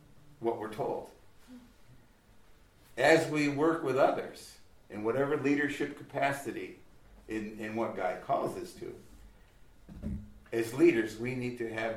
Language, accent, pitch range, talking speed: English, American, 105-140 Hz, 125 wpm